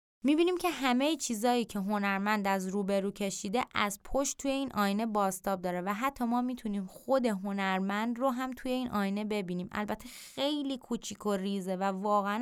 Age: 20-39